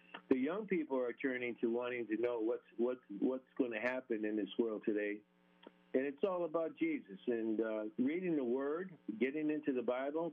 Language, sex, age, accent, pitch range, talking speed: English, male, 50-69, American, 115-145 Hz, 190 wpm